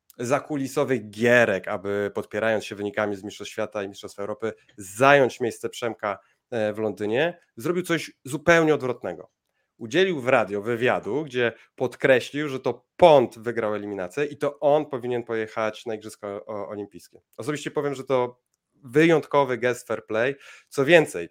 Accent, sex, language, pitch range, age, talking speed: native, male, Polish, 110-145 Hz, 30-49, 140 wpm